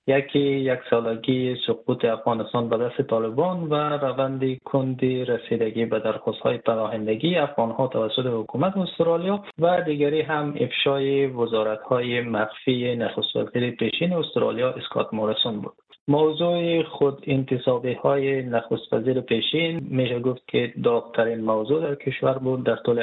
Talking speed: 120 wpm